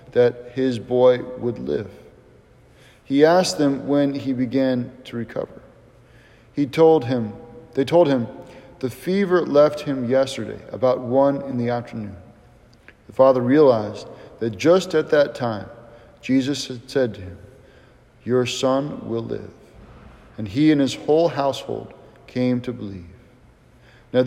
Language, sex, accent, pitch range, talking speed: English, male, American, 110-135 Hz, 140 wpm